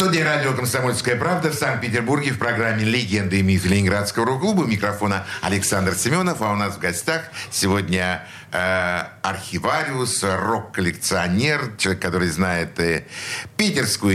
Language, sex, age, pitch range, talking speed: Russian, male, 60-79, 95-130 Hz, 125 wpm